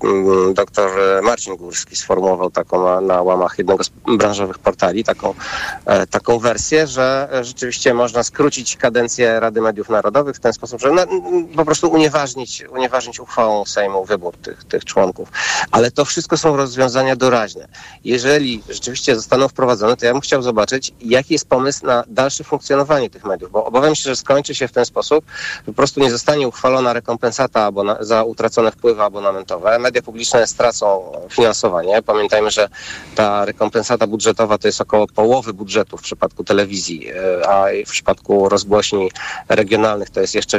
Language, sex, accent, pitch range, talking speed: Polish, male, native, 105-135 Hz, 160 wpm